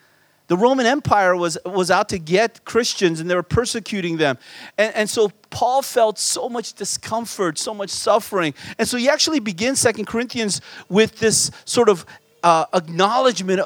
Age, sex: 40-59, male